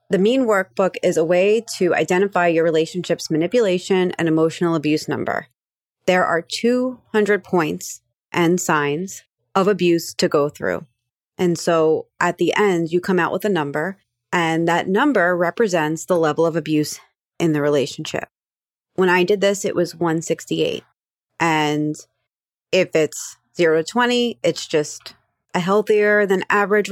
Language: English